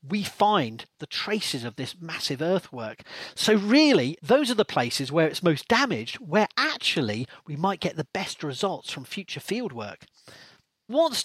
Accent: British